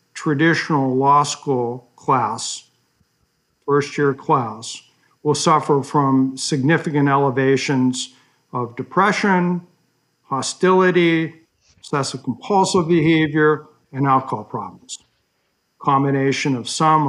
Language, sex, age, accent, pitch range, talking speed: English, male, 60-79, American, 130-165 Hz, 85 wpm